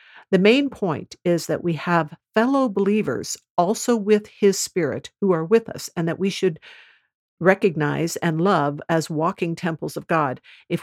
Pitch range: 160-205 Hz